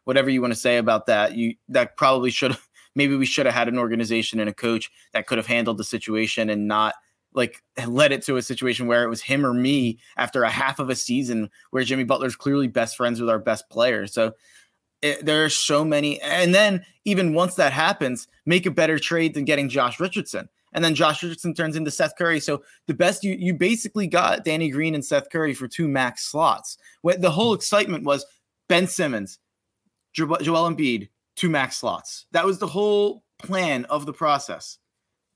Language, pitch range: English, 115-165 Hz